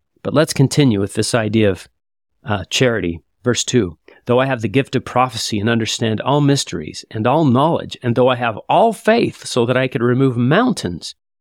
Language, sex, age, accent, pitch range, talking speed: English, male, 40-59, American, 105-130 Hz, 195 wpm